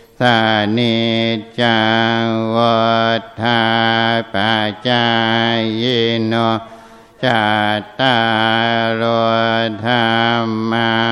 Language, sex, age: Thai, male, 60-79